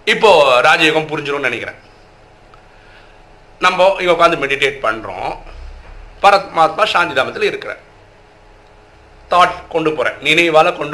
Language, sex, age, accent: Tamil, male, 50-69, native